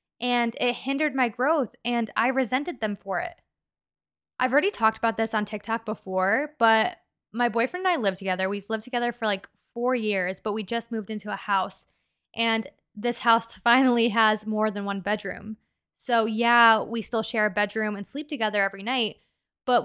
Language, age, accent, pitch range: English, 20-39, American, 215-255 Hz